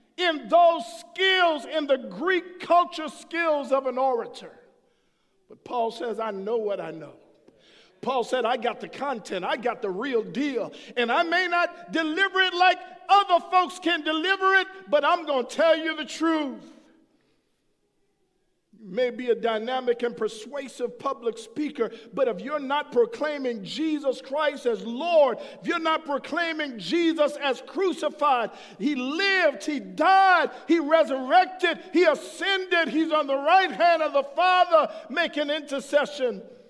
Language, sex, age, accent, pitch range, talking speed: English, male, 50-69, American, 230-325 Hz, 150 wpm